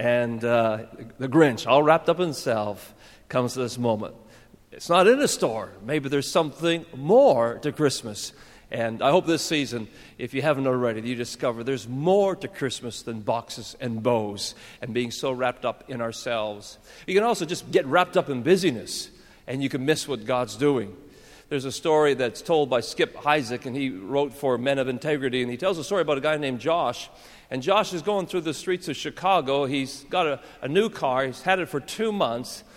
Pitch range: 125-175 Hz